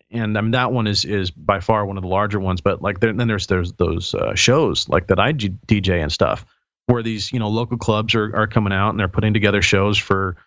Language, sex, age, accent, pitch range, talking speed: English, male, 40-59, American, 100-115 Hz, 265 wpm